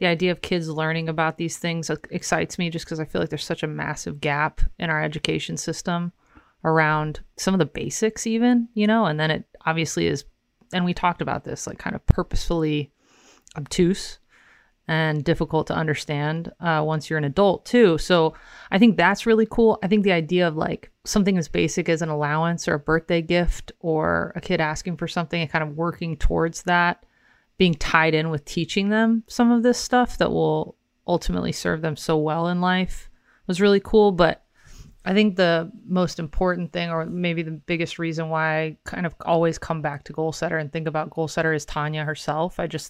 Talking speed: 205 wpm